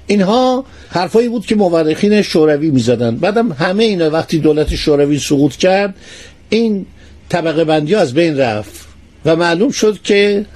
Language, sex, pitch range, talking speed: Persian, male, 150-210 Hz, 140 wpm